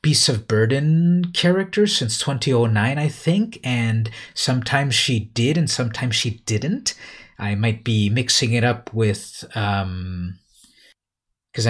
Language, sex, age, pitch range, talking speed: English, male, 30-49, 110-145 Hz, 130 wpm